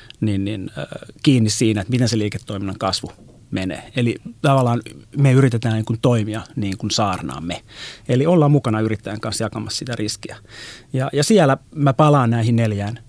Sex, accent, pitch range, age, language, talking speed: male, native, 105-125 Hz, 30-49, Finnish, 155 wpm